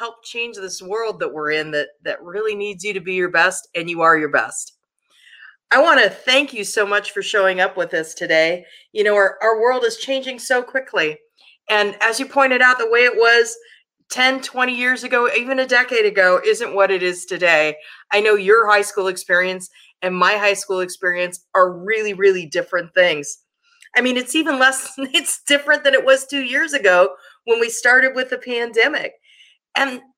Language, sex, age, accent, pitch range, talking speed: English, female, 30-49, American, 185-255 Hz, 200 wpm